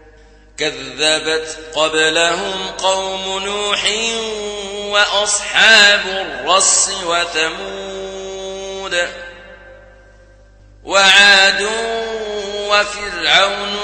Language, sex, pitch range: Arabic, male, 160-195 Hz